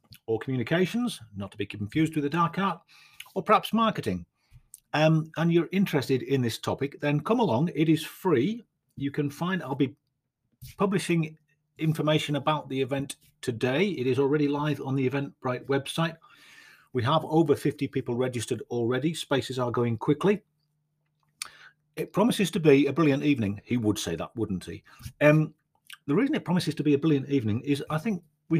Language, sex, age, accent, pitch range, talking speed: English, male, 40-59, British, 120-155 Hz, 175 wpm